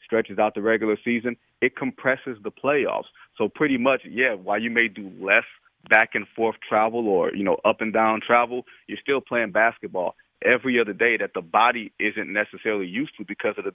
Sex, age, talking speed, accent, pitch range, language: male, 30-49, 185 wpm, American, 110-140 Hz, English